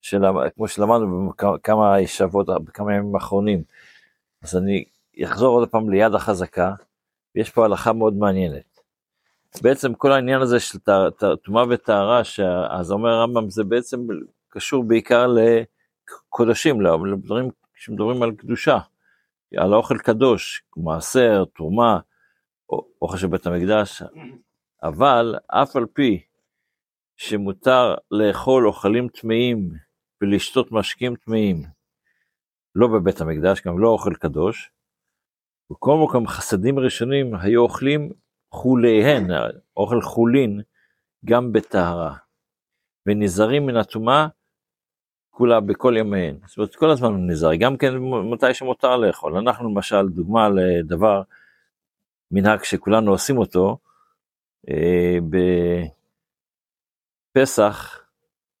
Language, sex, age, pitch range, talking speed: Hebrew, male, 50-69, 95-120 Hz, 105 wpm